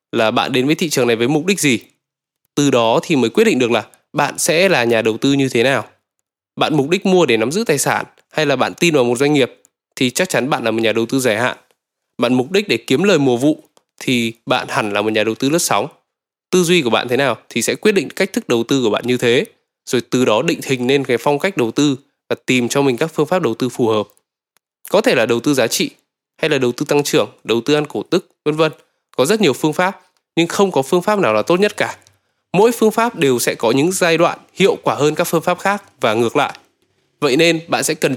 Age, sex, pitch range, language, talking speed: 10-29, male, 125-175 Hz, Vietnamese, 270 wpm